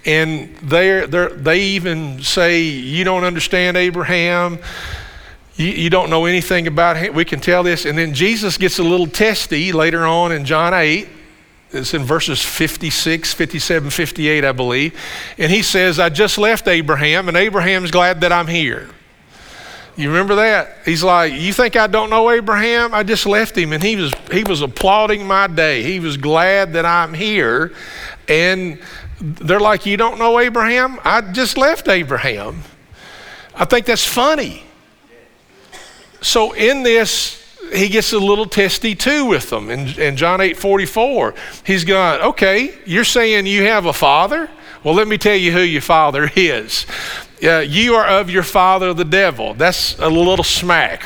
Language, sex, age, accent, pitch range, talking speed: English, male, 50-69, American, 165-210 Hz, 165 wpm